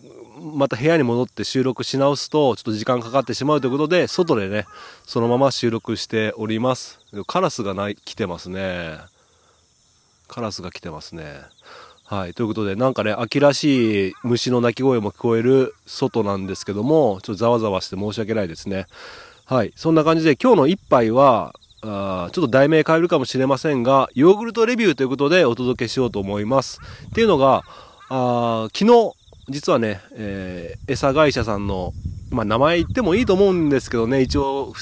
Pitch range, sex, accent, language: 105-140 Hz, male, native, Japanese